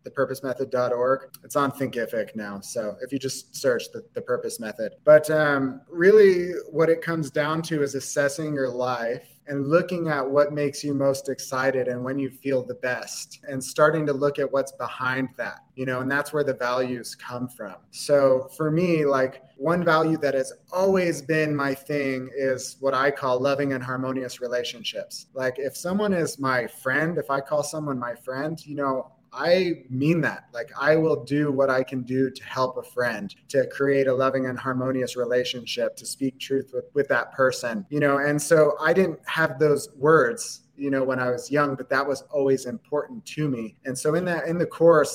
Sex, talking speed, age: male, 200 wpm, 20-39